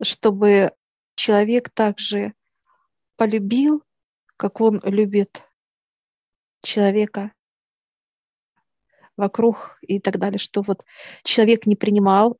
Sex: female